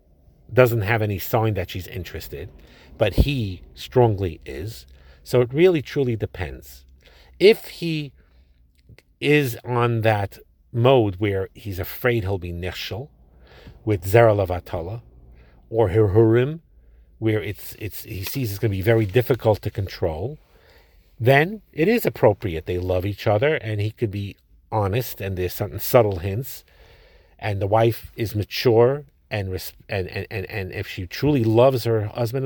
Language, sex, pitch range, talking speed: English, male, 90-120 Hz, 150 wpm